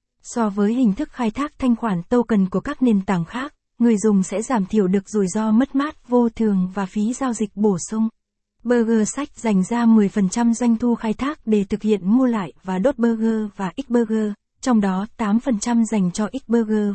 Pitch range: 205-240 Hz